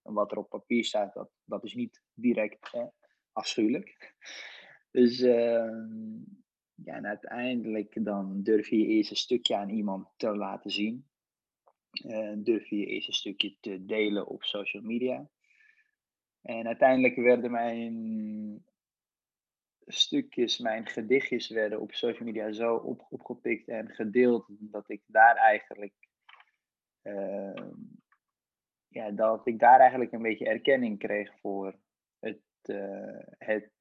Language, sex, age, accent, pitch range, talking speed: Dutch, male, 20-39, Dutch, 105-120 Hz, 135 wpm